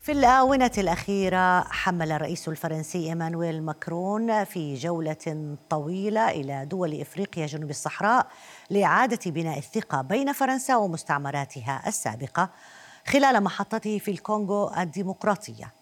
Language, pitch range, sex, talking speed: Arabic, 155-215 Hz, female, 105 wpm